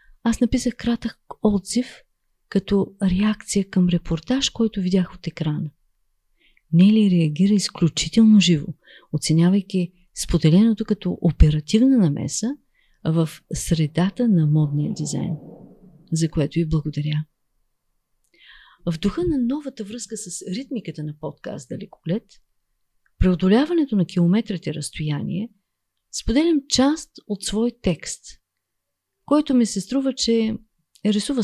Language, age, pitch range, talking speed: Bulgarian, 40-59, 160-230 Hz, 105 wpm